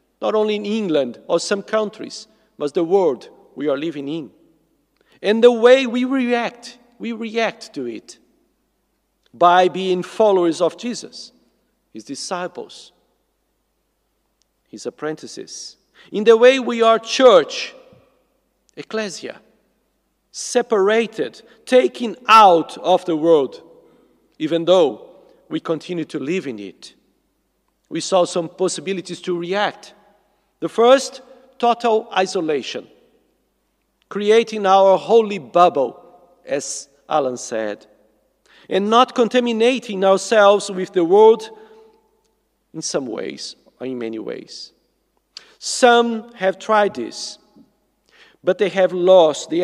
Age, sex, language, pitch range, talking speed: 50-69, male, English, 165-235 Hz, 110 wpm